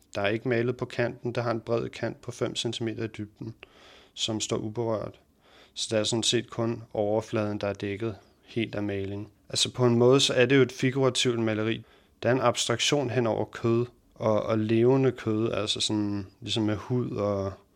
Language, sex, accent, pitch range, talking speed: Danish, male, native, 110-120 Hz, 205 wpm